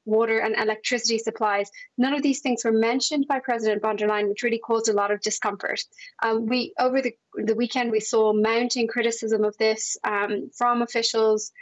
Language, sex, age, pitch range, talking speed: English, female, 20-39, 215-240 Hz, 190 wpm